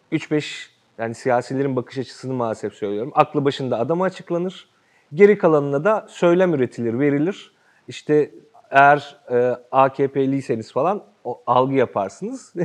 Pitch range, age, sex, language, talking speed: 125-160 Hz, 40-59, male, Turkish, 115 wpm